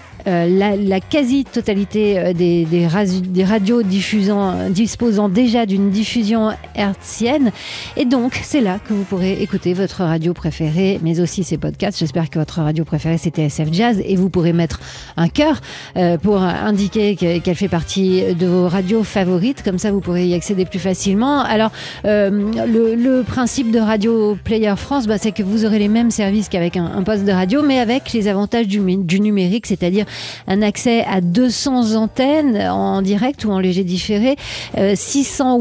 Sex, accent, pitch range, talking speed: female, French, 190-230 Hz, 180 wpm